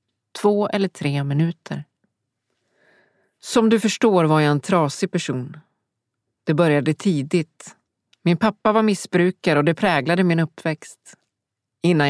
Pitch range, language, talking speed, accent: 145-190 Hz, Swedish, 125 wpm, native